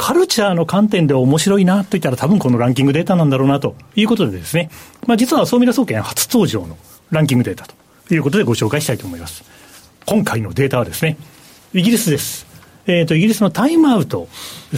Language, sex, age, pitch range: Japanese, male, 40-59, 130-220 Hz